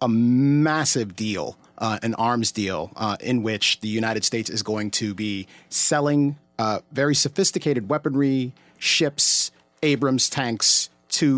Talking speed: 135 wpm